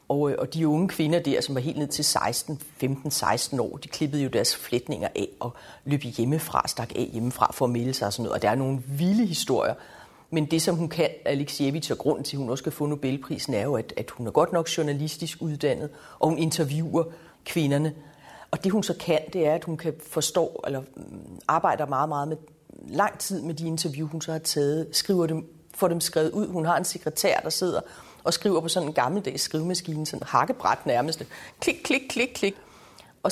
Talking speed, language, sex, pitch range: 215 wpm, Danish, female, 145-185 Hz